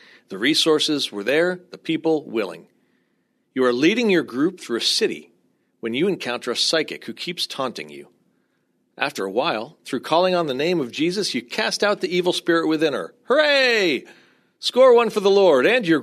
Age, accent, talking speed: 40-59, American, 185 wpm